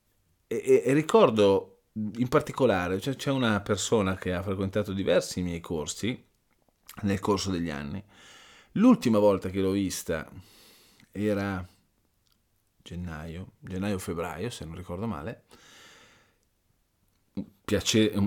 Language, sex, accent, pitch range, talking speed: Italian, male, native, 90-110 Hz, 110 wpm